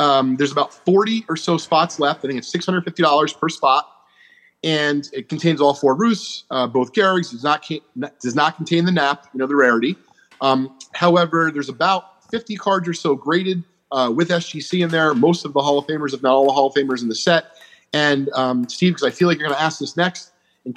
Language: English